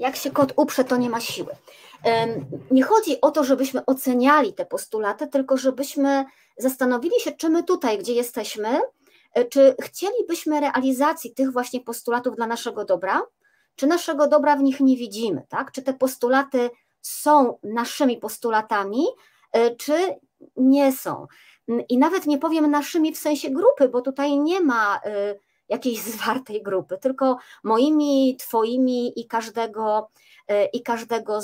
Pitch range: 225-290 Hz